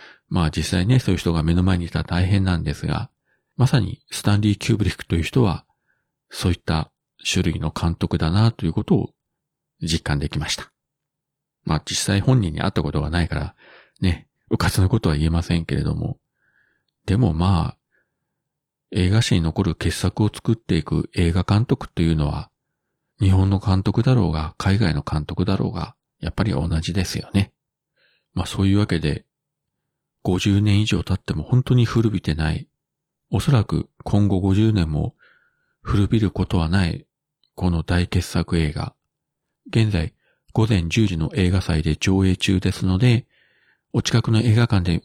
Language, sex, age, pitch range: Japanese, male, 40-59, 85-110 Hz